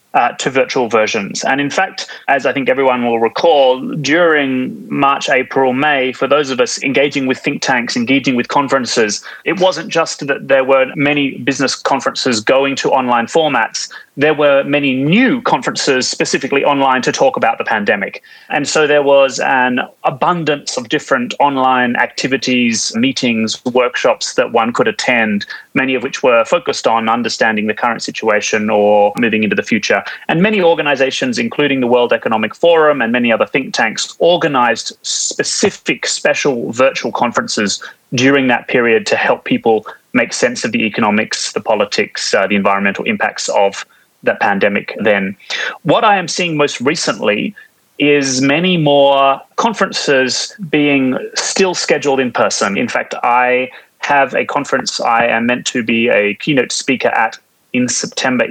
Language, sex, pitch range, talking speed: Polish, male, 125-155 Hz, 160 wpm